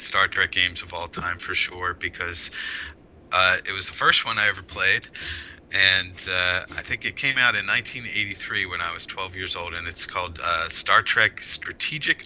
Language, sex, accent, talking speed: English, male, American, 195 wpm